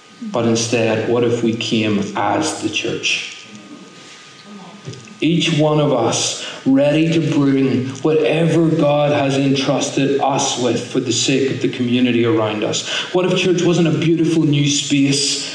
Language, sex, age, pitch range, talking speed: English, male, 40-59, 120-150 Hz, 145 wpm